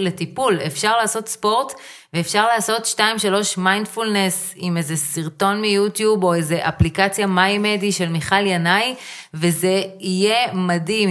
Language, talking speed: Hebrew, 120 wpm